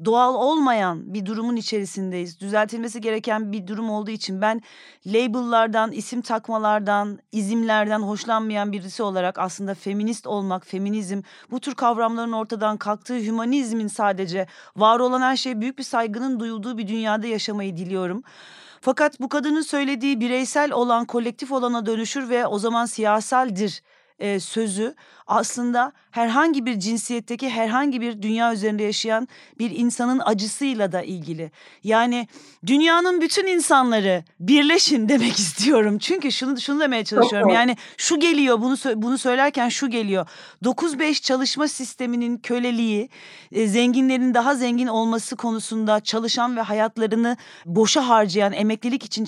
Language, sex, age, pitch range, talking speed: Turkish, female, 40-59, 215-255 Hz, 130 wpm